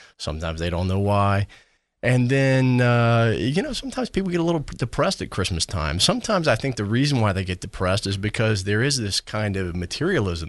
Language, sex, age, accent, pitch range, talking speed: English, male, 40-59, American, 90-115 Hz, 205 wpm